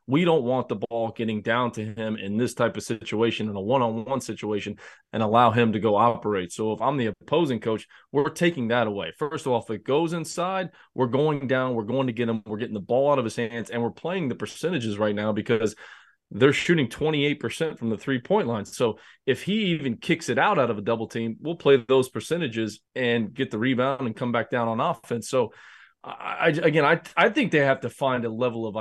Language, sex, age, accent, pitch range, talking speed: English, male, 20-39, American, 110-140 Hz, 235 wpm